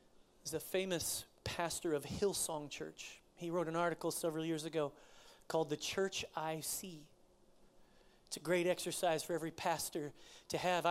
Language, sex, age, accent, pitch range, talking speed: English, male, 40-59, American, 165-185 Hz, 155 wpm